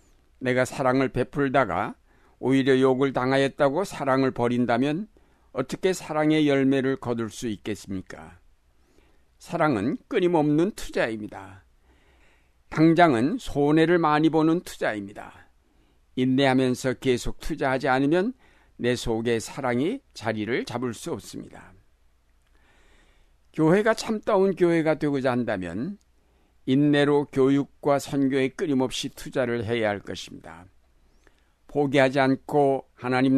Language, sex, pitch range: Korean, male, 105-145 Hz